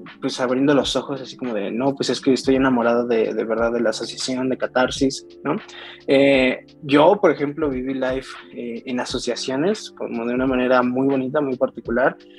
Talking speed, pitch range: 190 wpm, 120-135 Hz